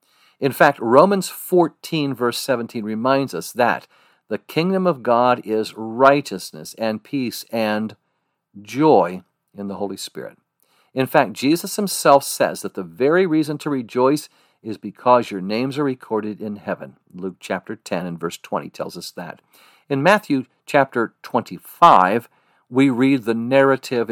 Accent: American